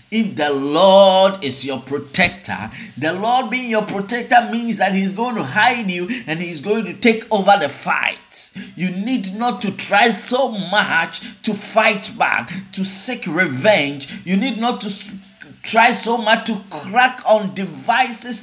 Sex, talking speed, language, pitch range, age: male, 165 wpm, English, 175-235 Hz, 50-69